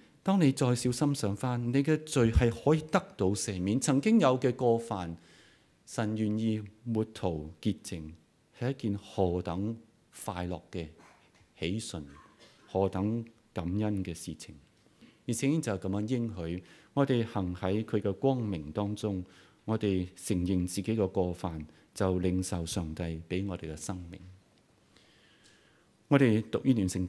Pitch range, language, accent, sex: 90-120 Hz, Chinese, native, male